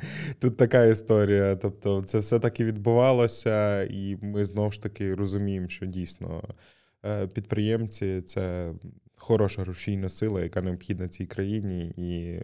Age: 20-39